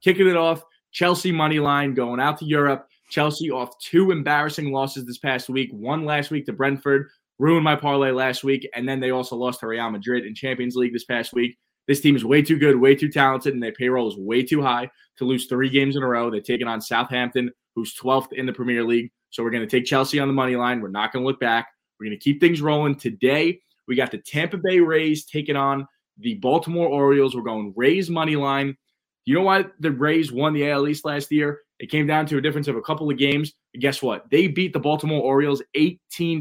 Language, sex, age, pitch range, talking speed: English, male, 20-39, 125-150 Hz, 240 wpm